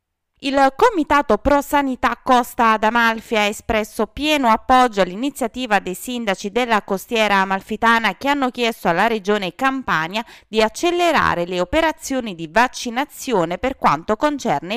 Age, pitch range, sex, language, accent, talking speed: 20-39, 185-245 Hz, female, Italian, native, 130 wpm